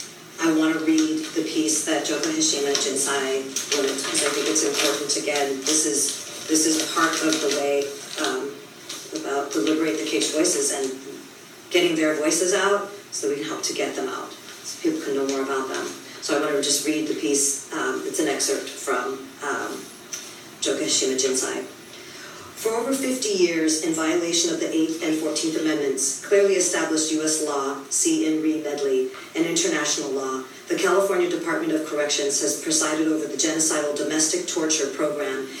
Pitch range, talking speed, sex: 145-190 Hz, 175 wpm, female